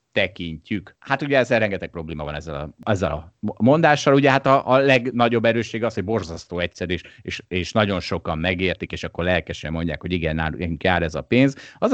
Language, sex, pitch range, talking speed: Hungarian, male, 90-125 Hz, 200 wpm